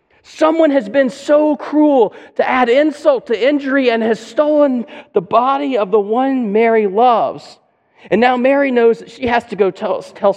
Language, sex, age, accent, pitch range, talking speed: English, male, 40-59, American, 175-240 Hz, 180 wpm